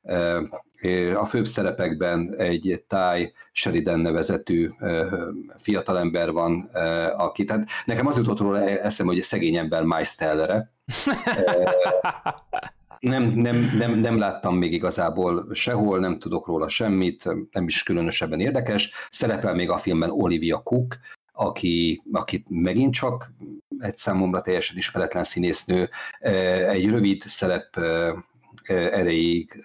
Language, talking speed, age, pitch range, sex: Hungarian, 115 wpm, 50-69, 85-105 Hz, male